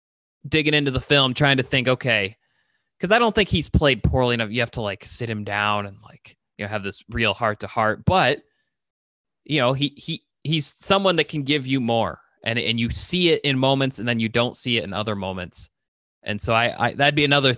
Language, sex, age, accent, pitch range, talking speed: English, male, 20-39, American, 115-140 Hz, 230 wpm